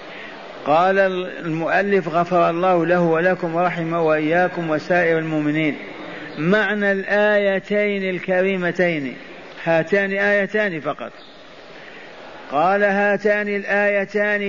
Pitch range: 175-205 Hz